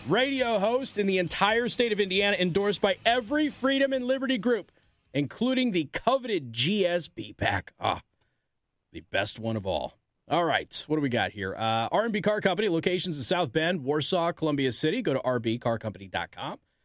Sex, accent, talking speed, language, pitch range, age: male, American, 165 wpm, English, 120-200 Hz, 30-49